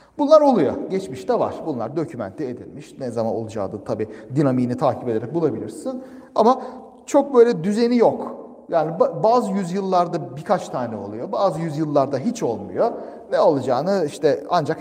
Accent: native